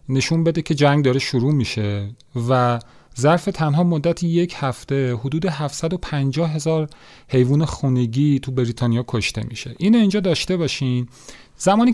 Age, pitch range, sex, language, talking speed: 40-59, 125-165 Hz, male, Persian, 135 wpm